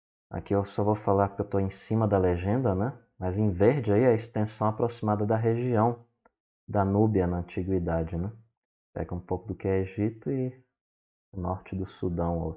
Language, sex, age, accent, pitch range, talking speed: Portuguese, male, 20-39, Brazilian, 95-115 Hz, 190 wpm